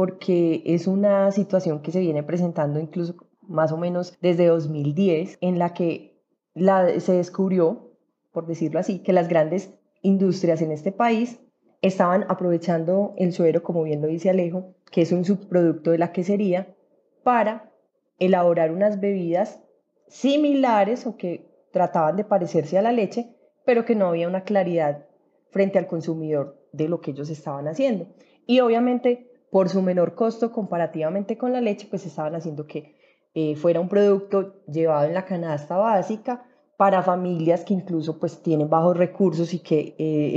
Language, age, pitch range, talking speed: Spanish, 20-39, 165-200 Hz, 160 wpm